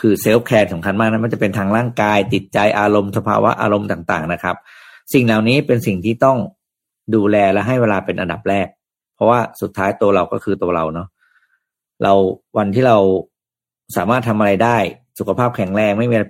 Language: Thai